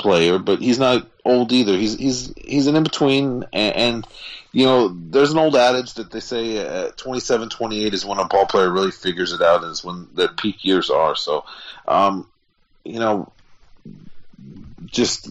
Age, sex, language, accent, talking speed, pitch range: 40-59, male, English, American, 175 wpm, 90-125 Hz